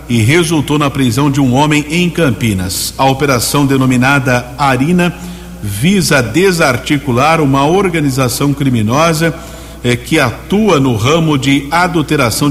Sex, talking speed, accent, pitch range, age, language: male, 120 wpm, Brazilian, 130-155 Hz, 60-79, Portuguese